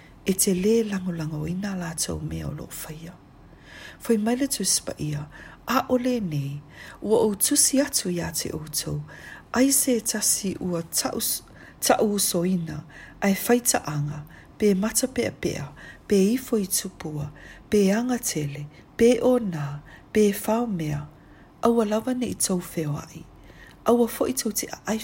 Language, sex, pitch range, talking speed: English, female, 155-225 Hz, 160 wpm